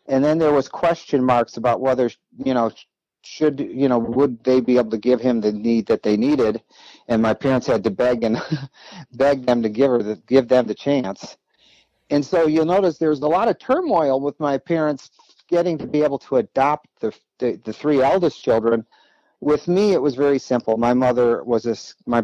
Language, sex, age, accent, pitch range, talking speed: English, male, 50-69, American, 115-145 Hz, 210 wpm